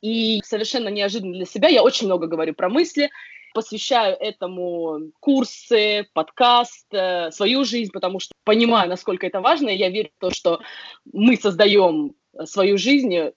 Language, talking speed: Russian, 150 wpm